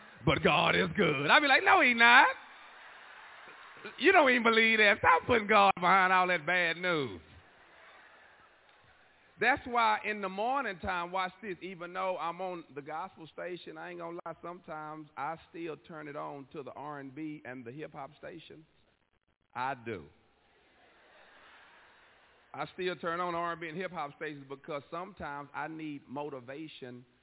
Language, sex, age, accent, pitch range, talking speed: English, male, 40-59, American, 145-185 Hz, 155 wpm